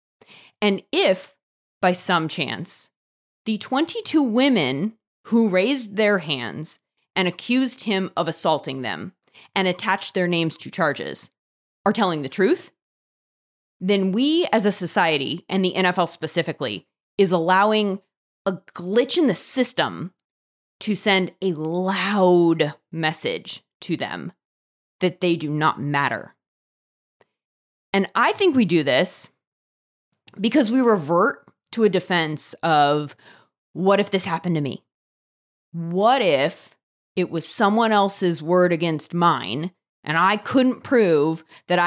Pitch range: 160-210 Hz